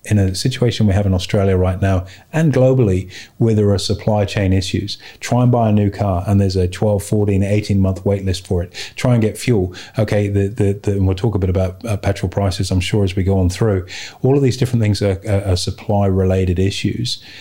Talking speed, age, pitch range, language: 230 wpm, 30-49, 95-110 Hz, English